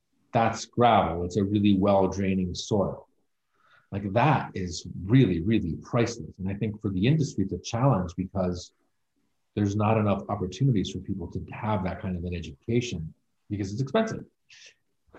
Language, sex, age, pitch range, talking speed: English, male, 40-59, 95-115 Hz, 155 wpm